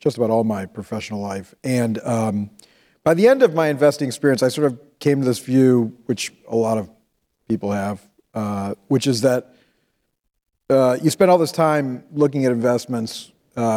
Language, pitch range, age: English, 105-130 Hz, 40-59